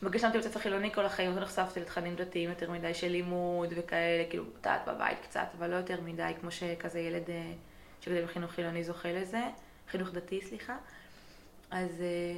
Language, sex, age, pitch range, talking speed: Hebrew, female, 20-39, 180-210 Hz, 175 wpm